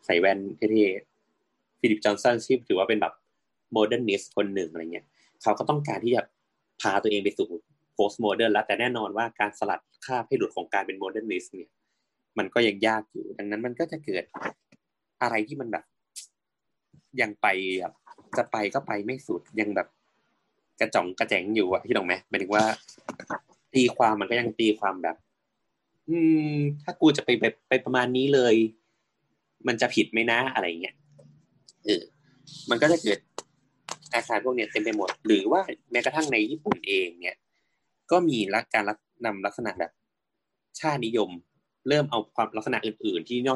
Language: Thai